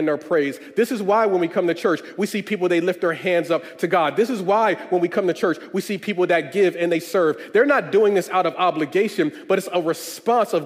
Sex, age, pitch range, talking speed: male, 30-49, 195-240 Hz, 270 wpm